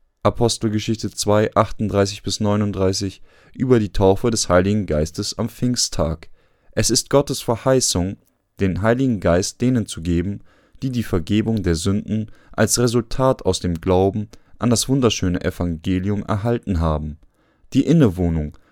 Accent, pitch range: German, 95-115 Hz